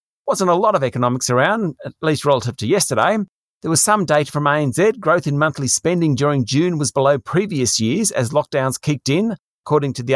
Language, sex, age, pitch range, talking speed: English, male, 40-59, 125-165 Hz, 200 wpm